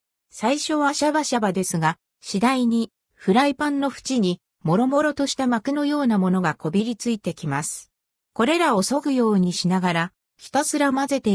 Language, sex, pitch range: Japanese, female, 180-265 Hz